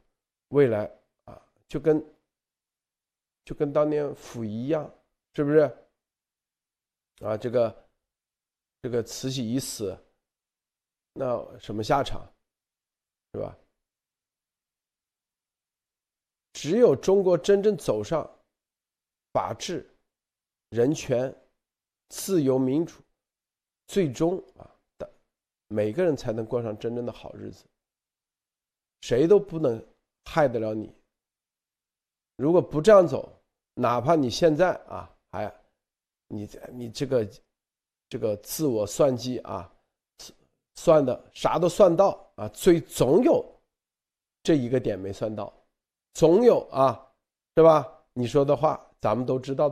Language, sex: Chinese, male